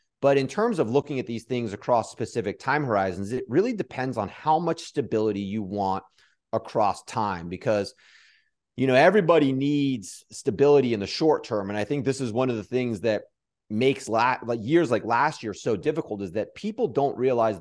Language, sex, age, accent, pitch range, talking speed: English, male, 30-49, American, 100-135 Hz, 195 wpm